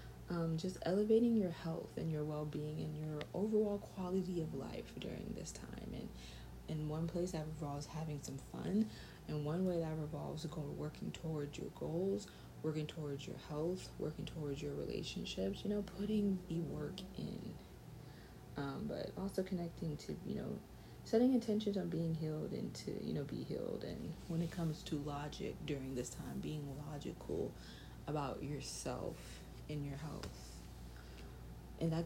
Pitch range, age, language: 130-170 Hz, 30-49, English